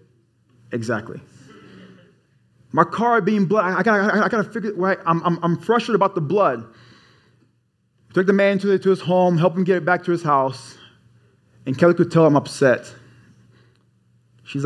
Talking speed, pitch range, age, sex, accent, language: 175 wpm, 125-185 Hz, 20-39, male, American, English